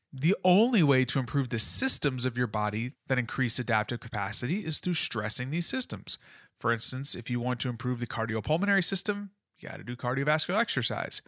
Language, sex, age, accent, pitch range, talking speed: English, male, 30-49, American, 120-155 Hz, 185 wpm